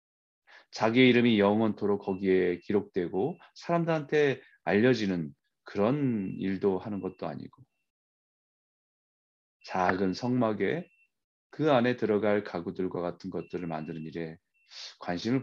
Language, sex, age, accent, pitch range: Korean, male, 30-49, native, 95-150 Hz